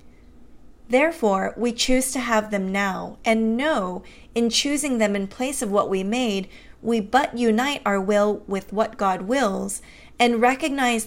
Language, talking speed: English, 155 wpm